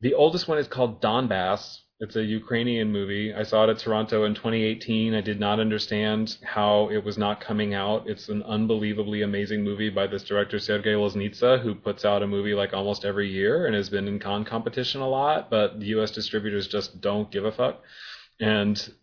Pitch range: 100-115 Hz